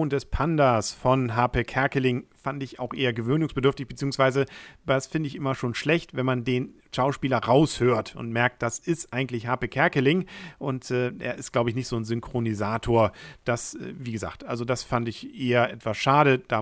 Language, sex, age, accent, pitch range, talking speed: German, male, 40-59, German, 110-140 Hz, 185 wpm